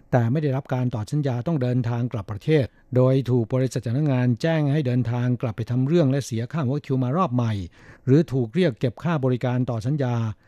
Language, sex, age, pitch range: Thai, male, 60-79, 120-145 Hz